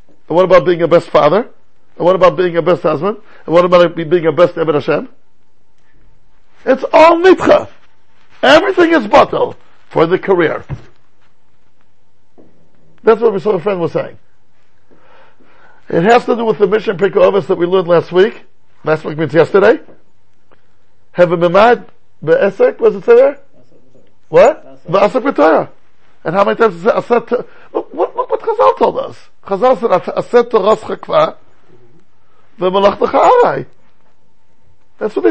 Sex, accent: male, American